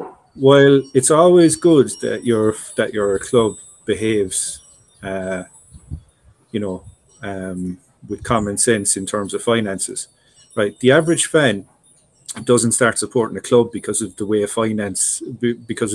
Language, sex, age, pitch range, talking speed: English, male, 30-49, 105-135 Hz, 140 wpm